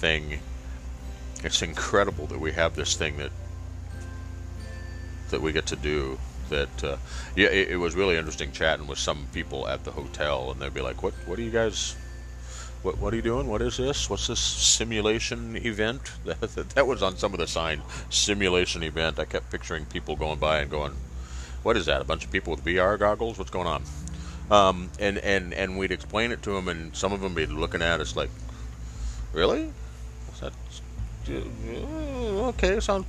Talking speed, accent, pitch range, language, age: 185 wpm, American, 65-95 Hz, English, 40-59